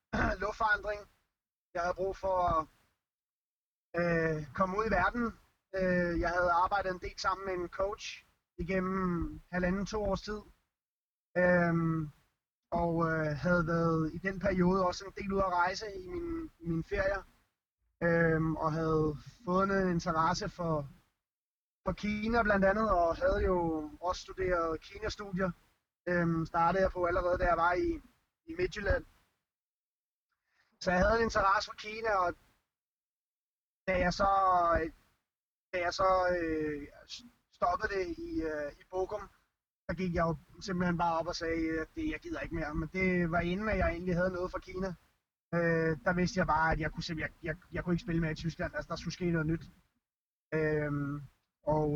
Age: 30-49